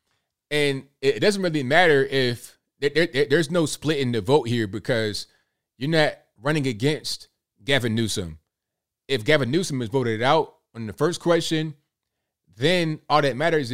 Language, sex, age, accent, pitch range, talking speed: English, male, 20-39, American, 120-145 Hz, 150 wpm